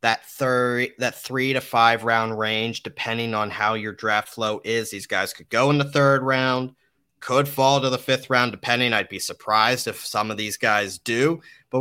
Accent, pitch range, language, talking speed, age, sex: American, 110-135 Hz, English, 205 wpm, 30-49, male